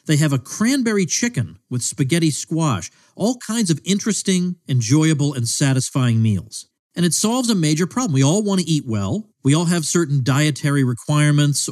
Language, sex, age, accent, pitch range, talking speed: English, male, 50-69, American, 125-180 Hz, 175 wpm